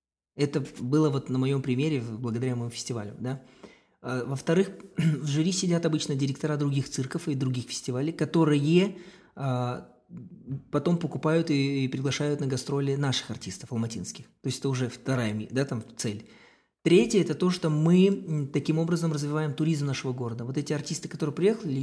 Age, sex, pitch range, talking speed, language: 20-39, male, 125-160 Hz, 140 wpm, Russian